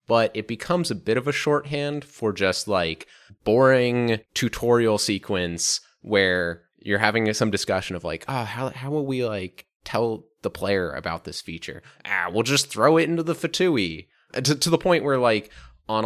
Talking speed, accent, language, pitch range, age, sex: 180 wpm, American, English, 90-120 Hz, 20-39, male